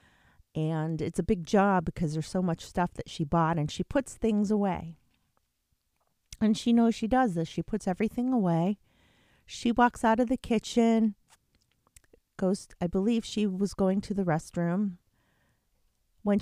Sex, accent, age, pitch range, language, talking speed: female, American, 40-59, 155-215 Hz, English, 160 wpm